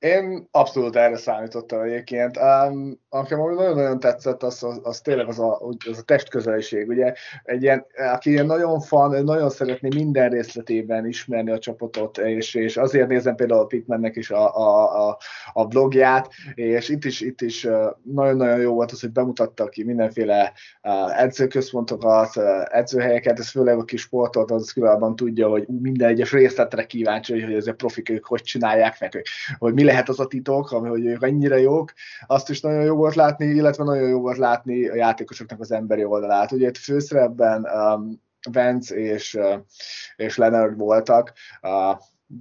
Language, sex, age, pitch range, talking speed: Hungarian, male, 20-39, 110-130 Hz, 165 wpm